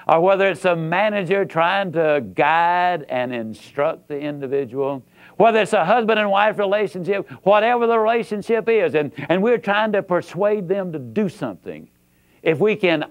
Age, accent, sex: 60-79, American, male